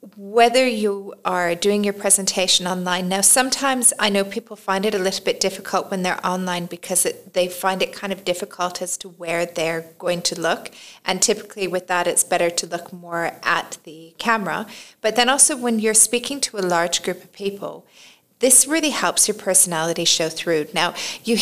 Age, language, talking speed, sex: 30-49, English, 195 wpm, female